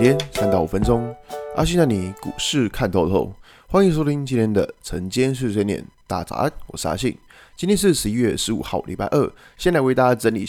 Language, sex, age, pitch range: Chinese, male, 20-39, 95-130 Hz